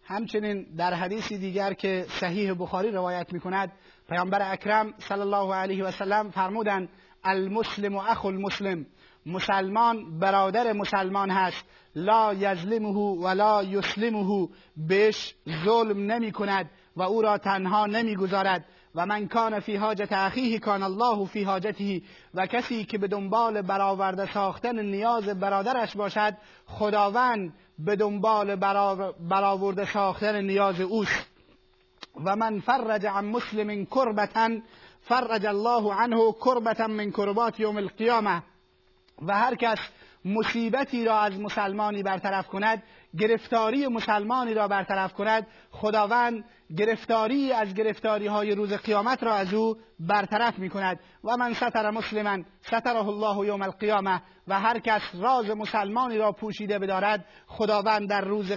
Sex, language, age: male, Persian, 30-49